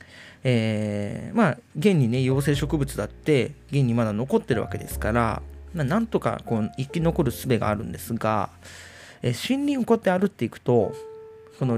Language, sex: Japanese, male